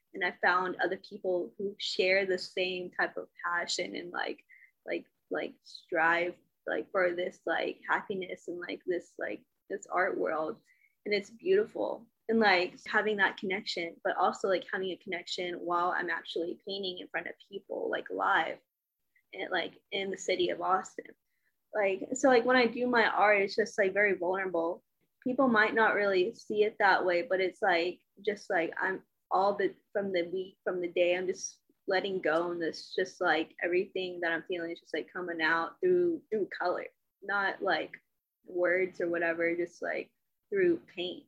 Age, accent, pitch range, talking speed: 10-29, American, 175-220 Hz, 180 wpm